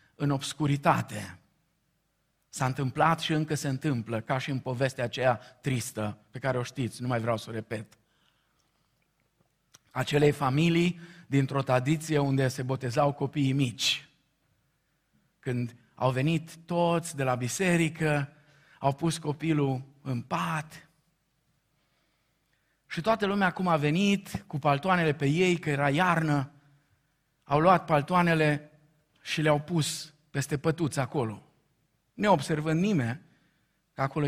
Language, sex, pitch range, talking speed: Romanian, male, 135-165 Hz, 125 wpm